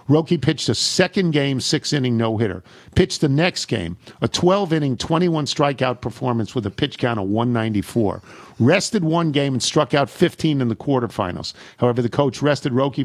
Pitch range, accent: 115-145 Hz, American